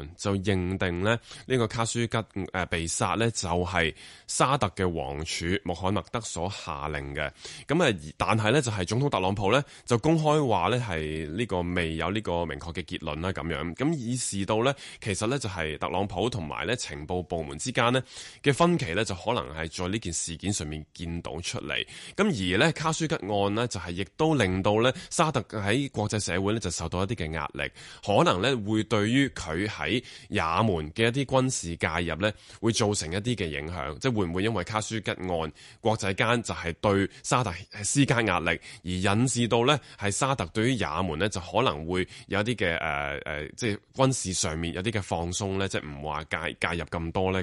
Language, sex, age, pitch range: Chinese, male, 20-39, 85-120 Hz